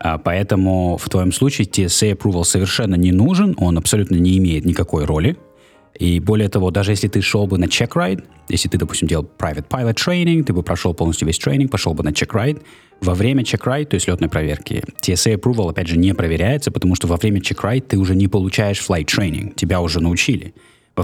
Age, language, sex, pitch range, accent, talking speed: 20-39, Russian, male, 90-110 Hz, native, 205 wpm